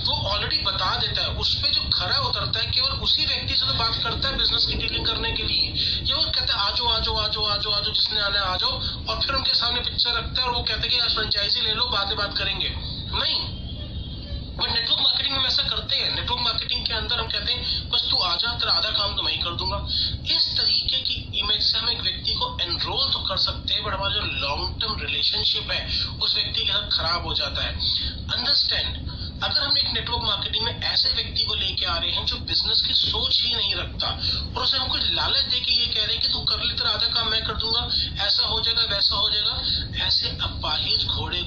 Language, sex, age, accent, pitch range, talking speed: Hindi, male, 30-49, native, 85-95 Hz, 135 wpm